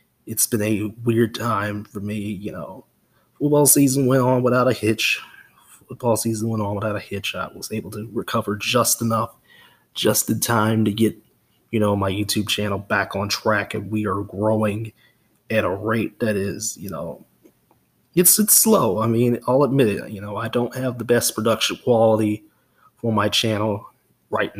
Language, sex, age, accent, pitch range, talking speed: English, male, 20-39, American, 105-115 Hz, 185 wpm